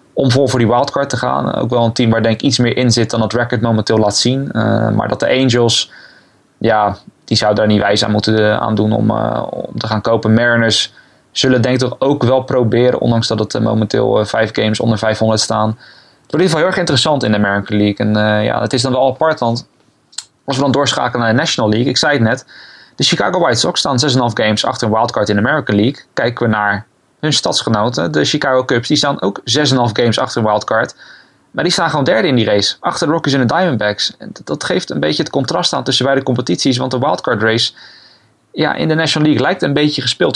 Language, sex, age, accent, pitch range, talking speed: Dutch, male, 20-39, Dutch, 110-135 Hz, 250 wpm